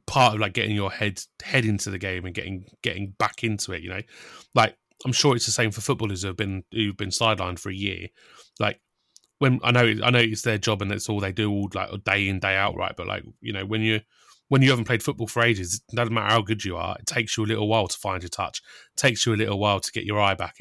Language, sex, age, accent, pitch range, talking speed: English, male, 20-39, British, 100-120 Hz, 280 wpm